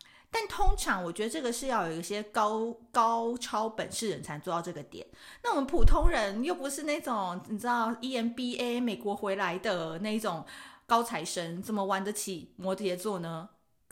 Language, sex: Chinese, female